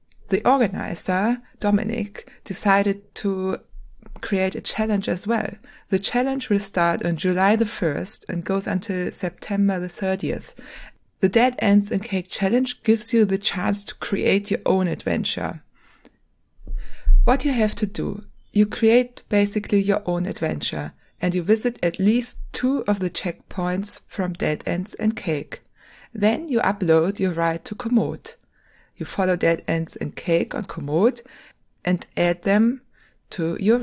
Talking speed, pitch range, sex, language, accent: 150 wpm, 180-220 Hz, female, German, German